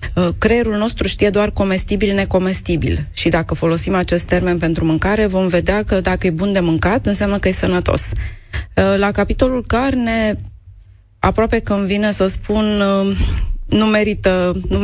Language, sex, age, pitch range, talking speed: Romanian, female, 20-39, 155-195 Hz, 145 wpm